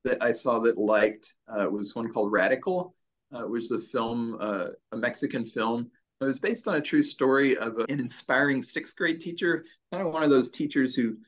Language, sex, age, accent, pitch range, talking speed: English, male, 40-59, American, 115-135 Hz, 215 wpm